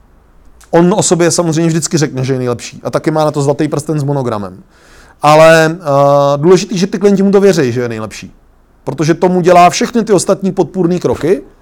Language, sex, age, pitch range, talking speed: Czech, male, 30-49, 125-170 Hz, 190 wpm